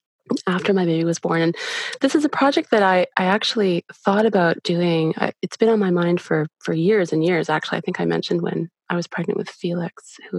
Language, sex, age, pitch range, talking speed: English, female, 20-39, 170-225 Hz, 230 wpm